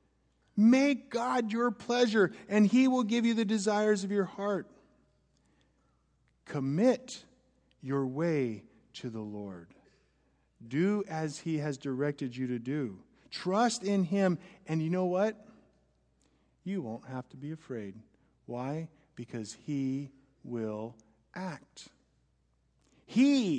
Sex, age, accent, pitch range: male, 50-69, American, 110-175 Hz